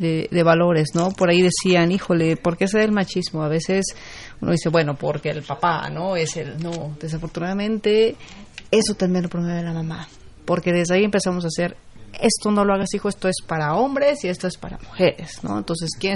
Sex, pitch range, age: female, 165-195 Hz, 30-49